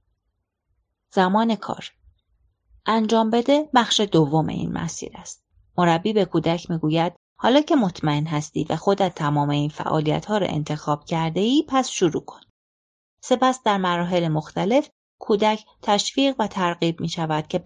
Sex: female